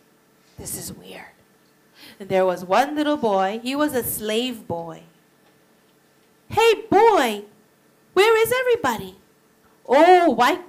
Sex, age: female, 40-59